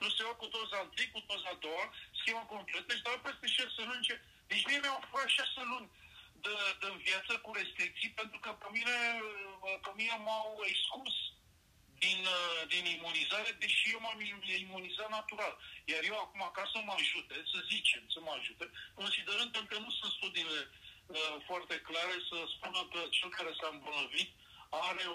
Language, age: Romanian, 50-69